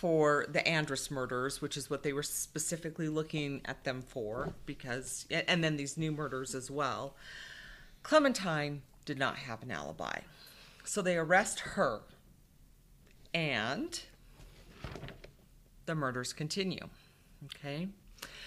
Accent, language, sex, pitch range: American, English, female, 145-180 Hz